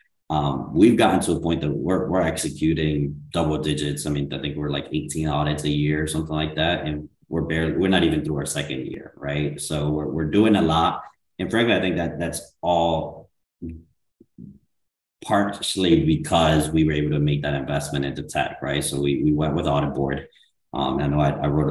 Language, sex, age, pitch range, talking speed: English, male, 30-49, 75-80 Hz, 210 wpm